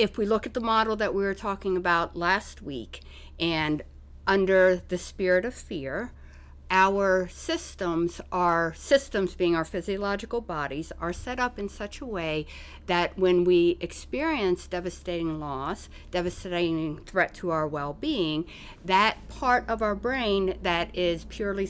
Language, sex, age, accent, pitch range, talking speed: English, female, 50-69, American, 155-195 Hz, 145 wpm